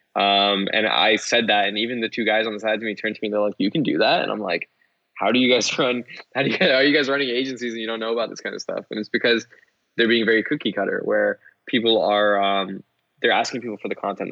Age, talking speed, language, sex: 10-29, 285 wpm, English, male